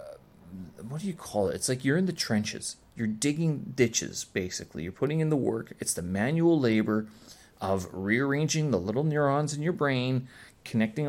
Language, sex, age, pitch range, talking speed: English, male, 30-49, 105-145 Hz, 180 wpm